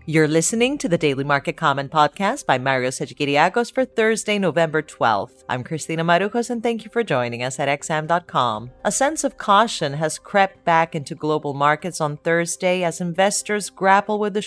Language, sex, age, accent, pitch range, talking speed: English, female, 40-59, American, 140-190 Hz, 180 wpm